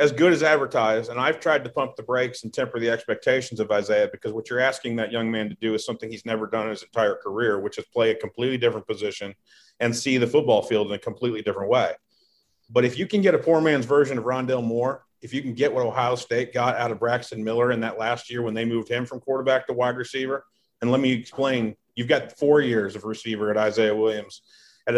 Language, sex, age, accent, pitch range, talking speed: English, male, 40-59, American, 110-125 Hz, 245 wpm